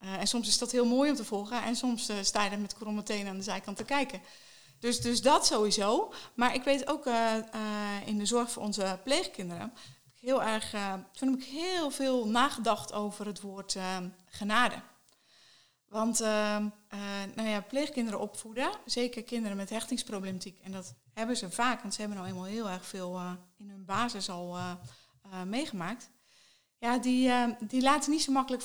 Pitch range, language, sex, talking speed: 200-245 Hz, Dutch, female, 200 wpm